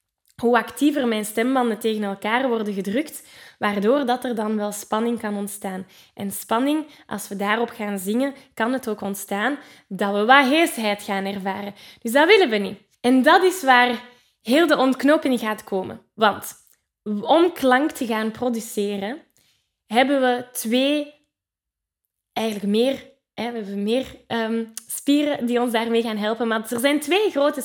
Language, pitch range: Dutch, 205-260 Hz